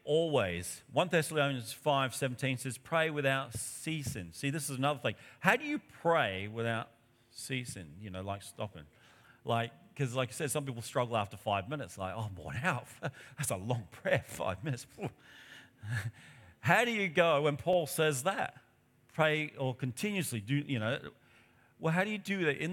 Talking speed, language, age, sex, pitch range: 175 wpm, English, 40-59, male, 115-150 Hz